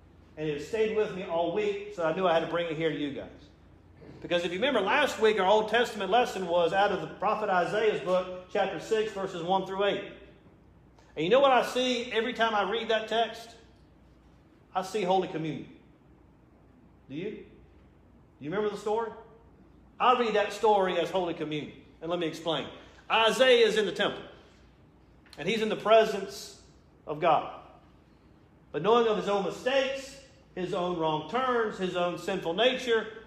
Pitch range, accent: 175-230 Hz, American